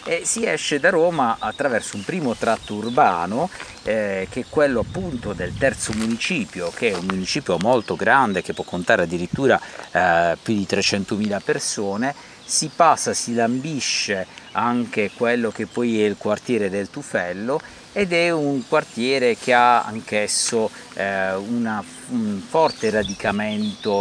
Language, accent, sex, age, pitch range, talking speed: Italian, native, male, 50-69, 100-130 Hz, 145 wpm